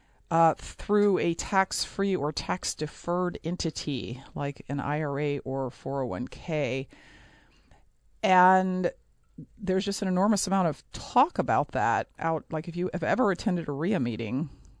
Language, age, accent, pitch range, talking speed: English, 40-59, American, 155-195 Hz, 130 wpm